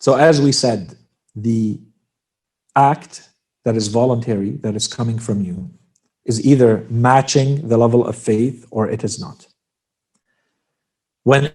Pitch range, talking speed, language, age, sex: 115-145 Hz, 135 wpm, English, 50-69, male